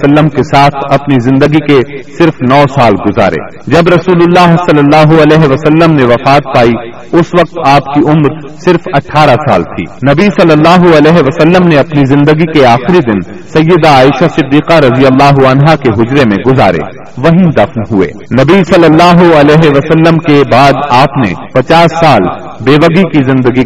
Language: Urdu